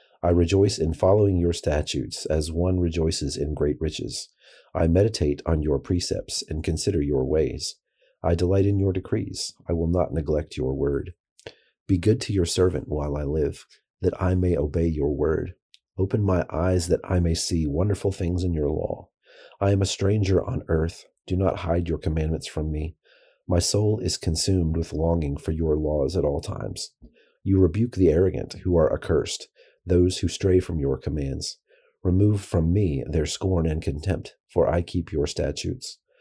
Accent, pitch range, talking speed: American, 80-95 Hz, 180 wpm